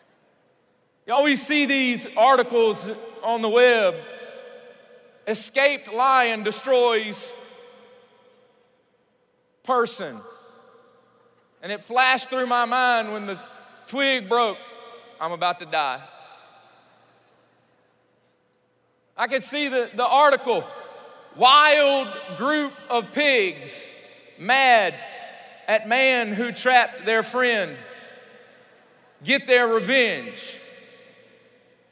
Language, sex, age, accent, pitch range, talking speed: English, male, 40-59, American, 225-270 Hz, 85 wpm